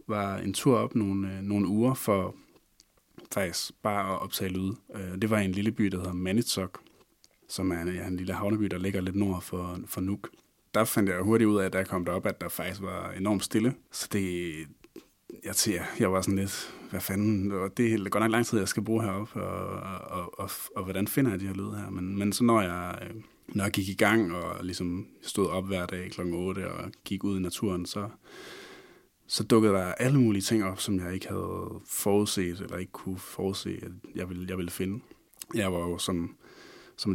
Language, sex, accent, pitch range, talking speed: Danish, male, native, 90-105 Hz, 225 wpm